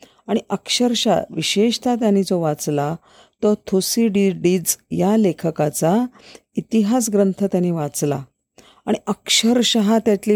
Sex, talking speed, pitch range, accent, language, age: female, 105 wpm, 160-210 Hz, native, Marathi, 50-69